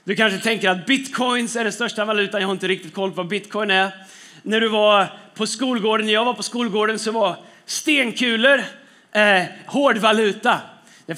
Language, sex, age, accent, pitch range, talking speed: Swedish, male, 30-49, native, 200-240 Hz, 190 wpm